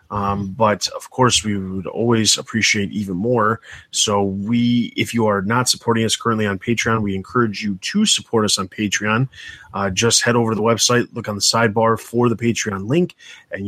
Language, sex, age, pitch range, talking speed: English, male, 20-39, 100-120 Hz, 200 wpm